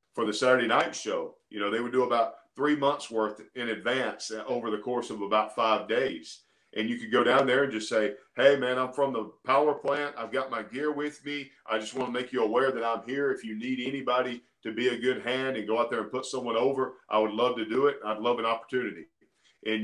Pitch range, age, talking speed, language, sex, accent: 110-140 Hz, 40-59, 250 wpm, English, male, American